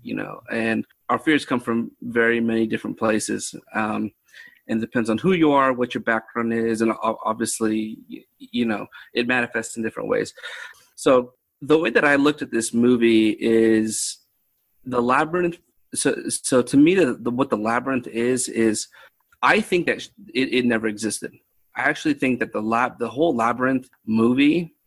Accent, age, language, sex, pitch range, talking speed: American, 30-49, English, male, 110-125 Hz, 165 wpm